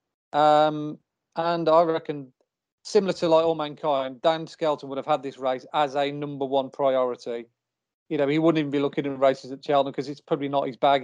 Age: 40-59